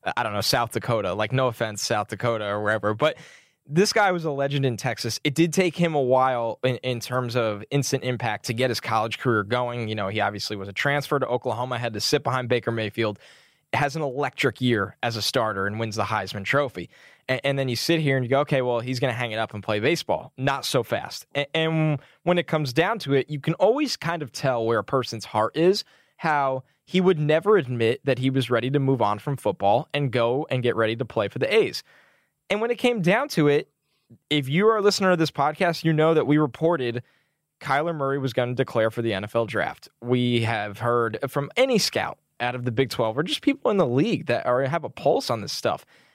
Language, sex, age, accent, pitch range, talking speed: English, male, 10-29, American, 120-155 Hz, 240 wpm